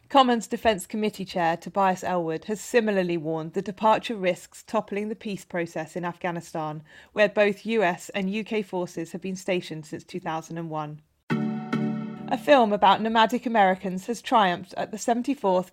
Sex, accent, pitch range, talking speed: female, British, 175-215 Hz, 150 wpm